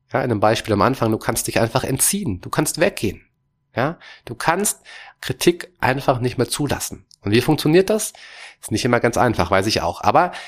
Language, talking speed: German, 200 wpm